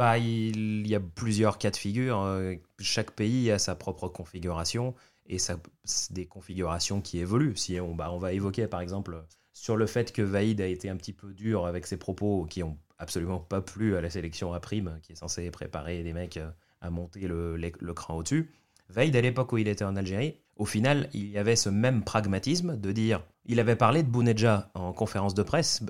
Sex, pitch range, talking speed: male, 90-120 Hz, 220 wpm